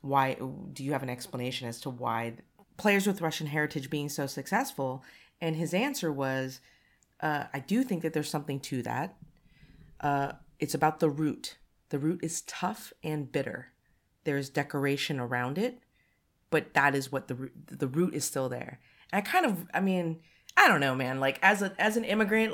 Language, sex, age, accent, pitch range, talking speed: English, female, 30-49, American, 135-170 Hz, 180 wpm